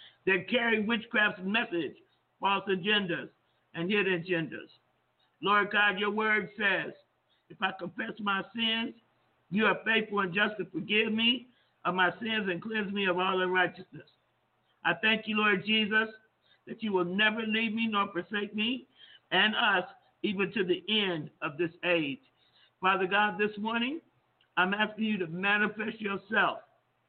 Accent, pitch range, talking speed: American, 185-220 Hz, 155 wpm